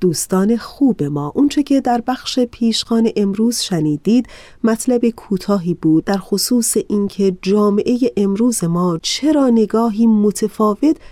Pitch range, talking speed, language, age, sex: 170-230 Hz, 120 wpm, Persian, 30-49, female